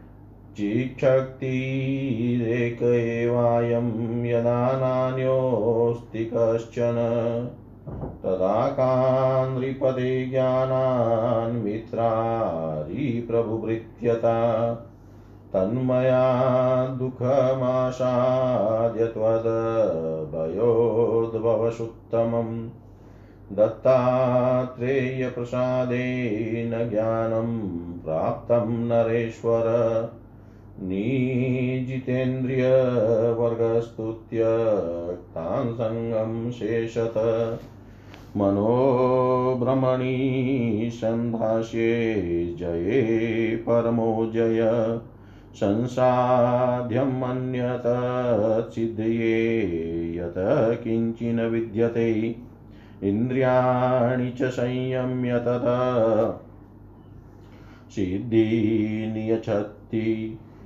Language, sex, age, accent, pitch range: Hindi, male, 40-59, native, 110-125 Hz